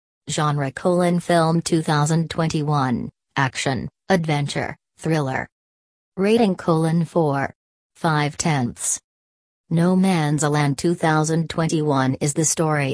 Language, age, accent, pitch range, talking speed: English, 40-59, American, 150-175 Hz, 90 wpm